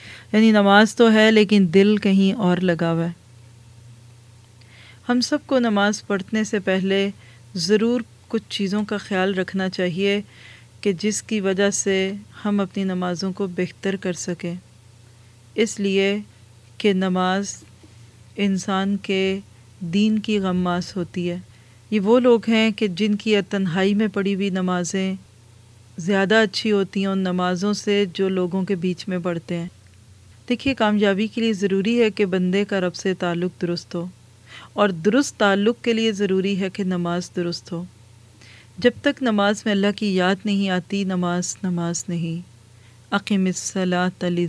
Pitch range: 175-205 Hz